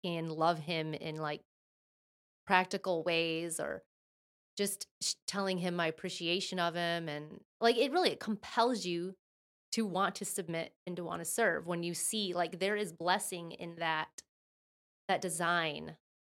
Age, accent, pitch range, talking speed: 20-39, American, 170-195 Hz, 150 wpm